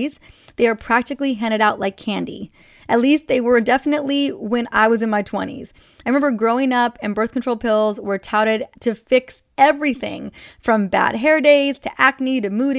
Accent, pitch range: American, 215-260 Hz